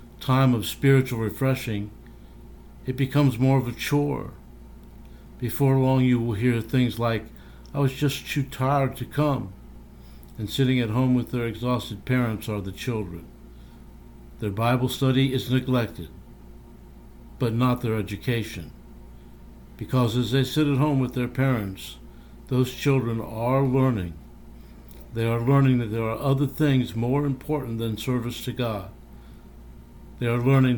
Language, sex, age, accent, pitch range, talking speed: English, male, 60-79, American, 85-130 Hz, 145 wpm